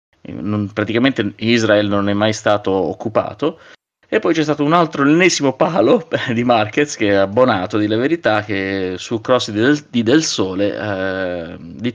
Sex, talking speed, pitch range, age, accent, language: male, 170 wpm, 100-125 Hz, 30-49, native, Italian